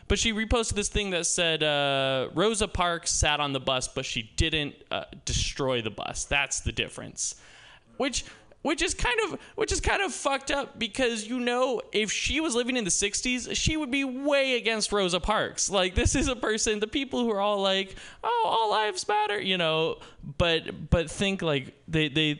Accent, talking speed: American, 200 wpm